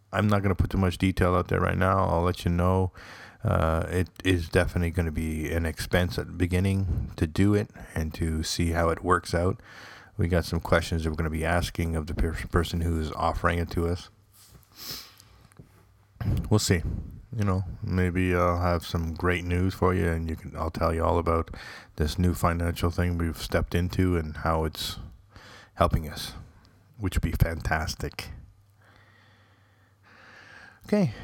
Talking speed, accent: 185 wpm, American